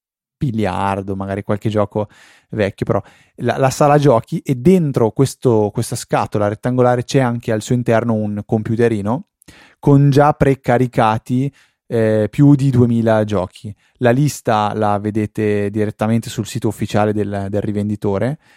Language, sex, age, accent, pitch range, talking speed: Italian, male, 20-39, native, 100-120 Hz, 135 wpm